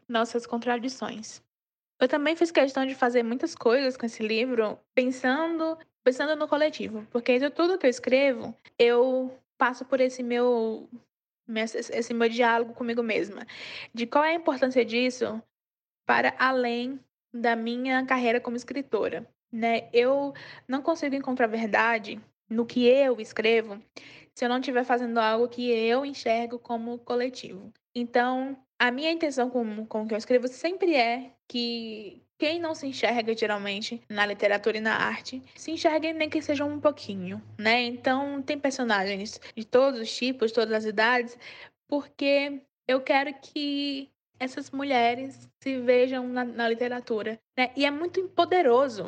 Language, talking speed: Portuguese, 150 wpm